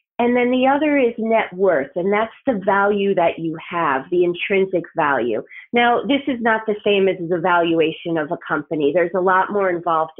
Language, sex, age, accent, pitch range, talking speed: English, female, 30-49, American, 180-220 Hz, 200 wpm